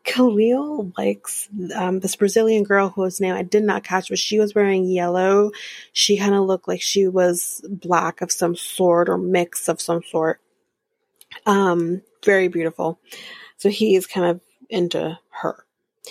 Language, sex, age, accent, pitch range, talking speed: English, female, 30-49, American, 175-230 Hz, 160 wpm